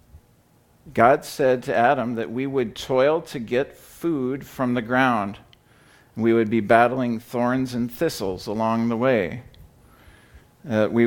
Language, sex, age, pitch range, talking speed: English, male, 50-69, 110-130 Hz, 140 wpm